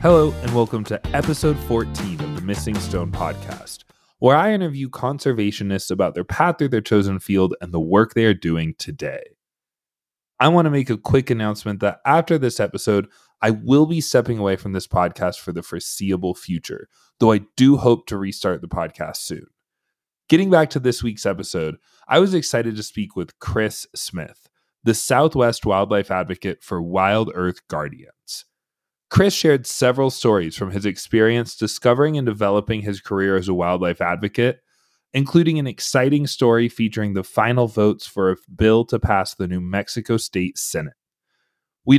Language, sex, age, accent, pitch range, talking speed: English, male, 20-39, American, 95-130 Hz, 170 wpm